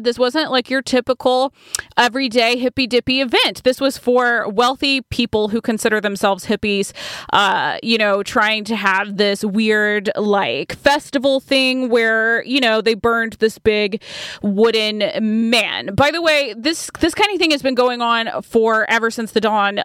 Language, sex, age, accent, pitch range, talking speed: English, female, 20-39, American, 220-270 Hz, 165 wpm